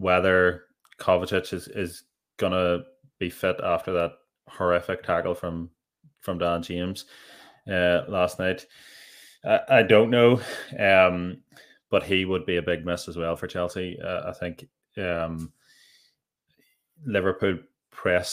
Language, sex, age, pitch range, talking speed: English, male, 20-39, 85-95 Hz, 135 wpm